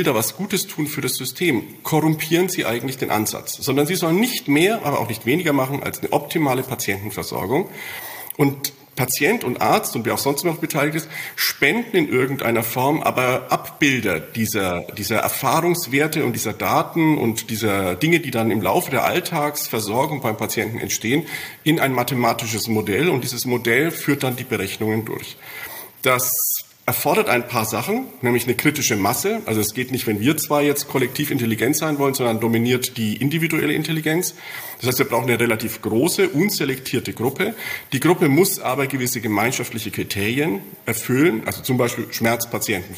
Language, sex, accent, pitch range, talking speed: German, male, German, 115-155 Hz, 170 wpm